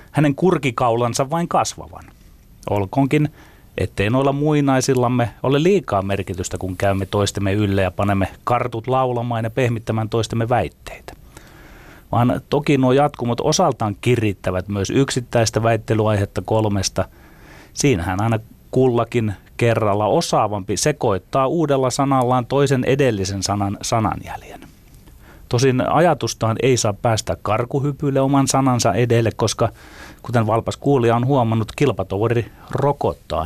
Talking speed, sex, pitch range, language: 110 wpm, male, 100-130 Hz, Finnish